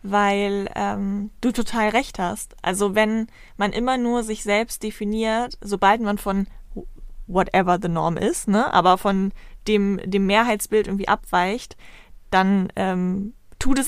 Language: German